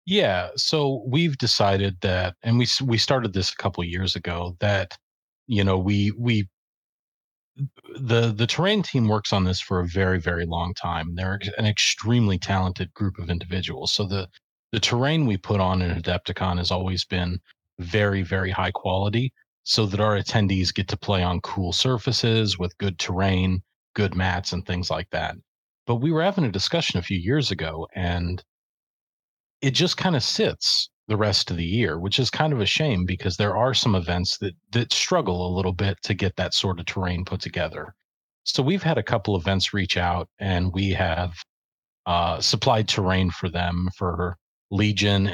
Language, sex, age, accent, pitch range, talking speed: English, male, 30-49, American, 90-110 Hz, 185 wpm